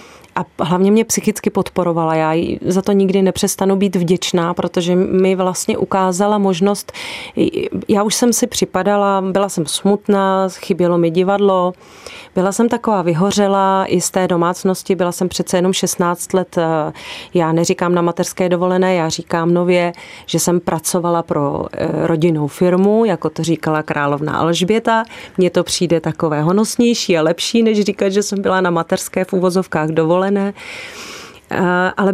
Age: 30-49